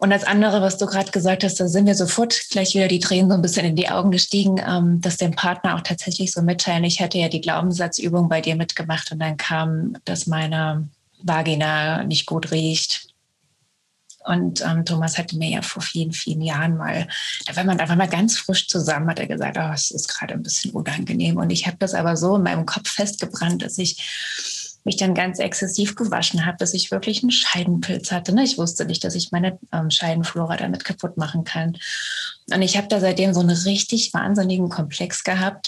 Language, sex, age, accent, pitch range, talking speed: German, female, 20-39, German, 165-195 Hz, 205 wpm